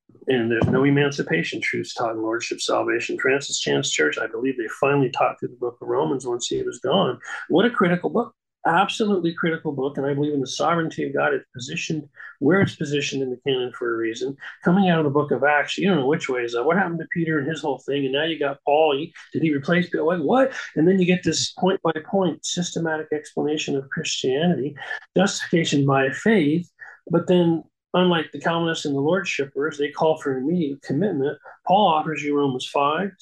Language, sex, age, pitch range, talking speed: English, male, 40-59, 140-175 Hz, 210 wpm